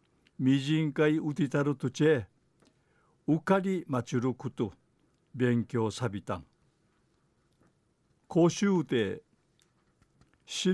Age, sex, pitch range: 50-69, male, 125-165 Hz